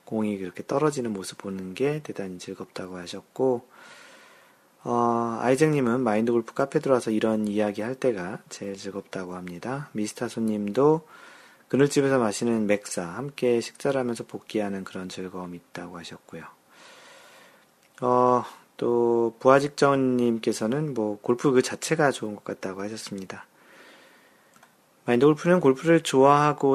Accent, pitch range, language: native, 105-130 Hz, Korean